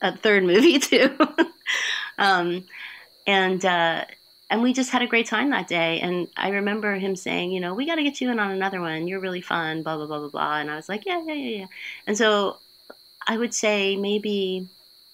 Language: English